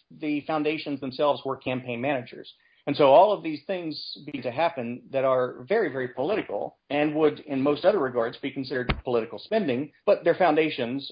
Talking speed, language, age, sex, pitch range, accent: 180 wpm, English, 50-69, male, 120-150 Hz, American